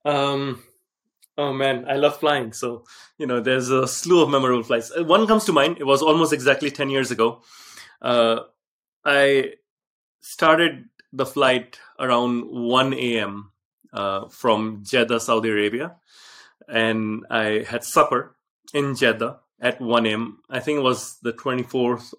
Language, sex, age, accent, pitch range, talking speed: English, male, 30-49, Indian, 115-145 Hz, 150 wpm